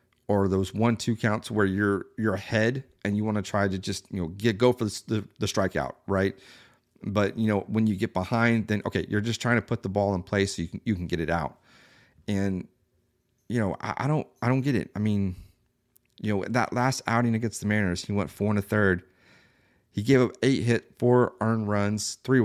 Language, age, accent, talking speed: English, 30-49, American, 235 wpm